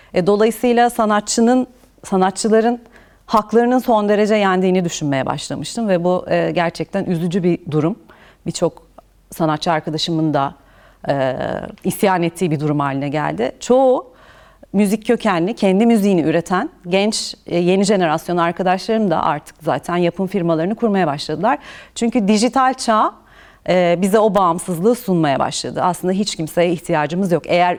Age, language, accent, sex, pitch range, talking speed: 40-59, Turkish, native, female, 165-215 Hz, 120 wpm